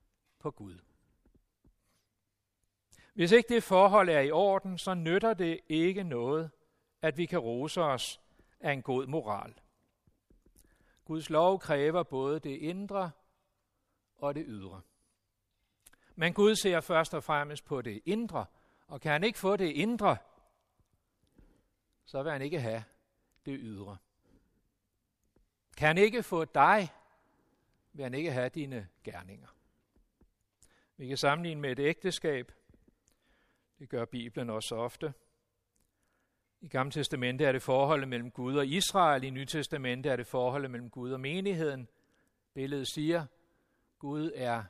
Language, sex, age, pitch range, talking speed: Danish, male, 60-79, 120-170 Hz, 135 wpm